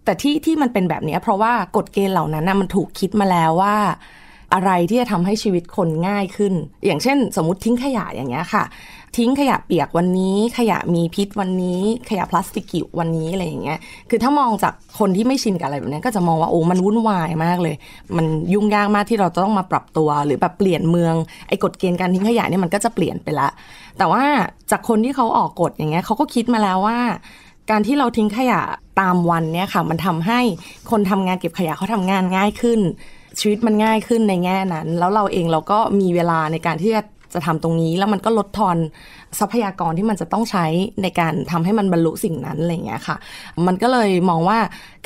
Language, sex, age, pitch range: Thai, female, 20-39, 170-215 Hz